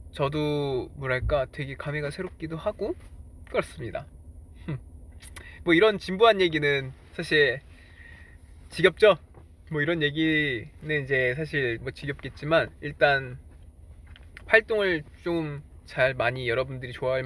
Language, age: Korean, 20-39